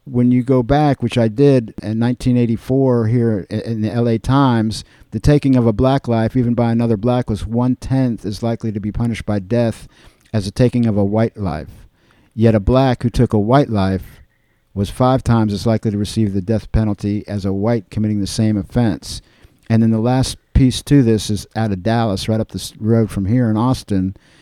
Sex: male